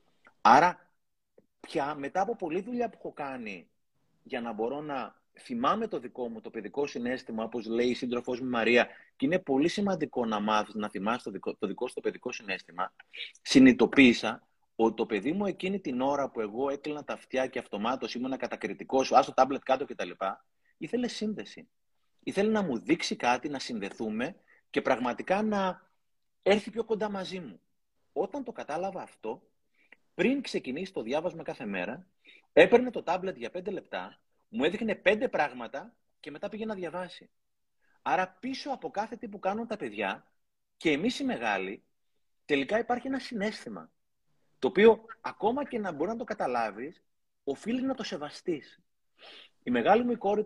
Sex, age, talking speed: male, 30-49, 170 wpm